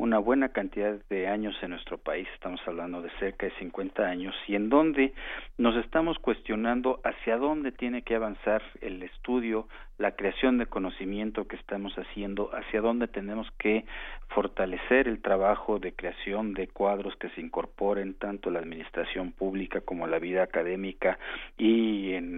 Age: 50-69